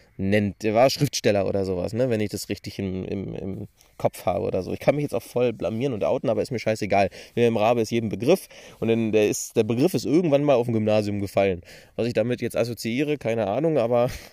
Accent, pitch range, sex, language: German, 100-150 Hz, male, German